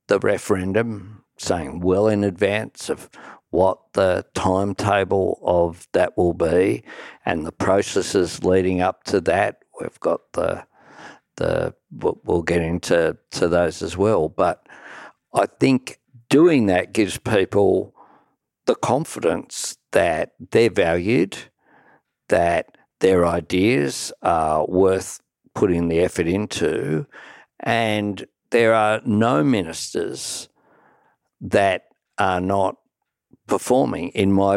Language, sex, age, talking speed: English, male, 50-69, 110 wpm